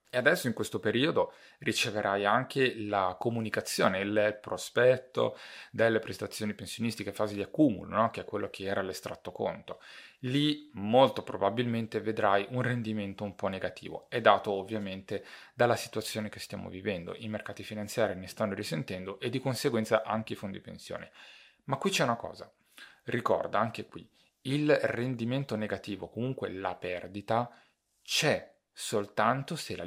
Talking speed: 145 wpm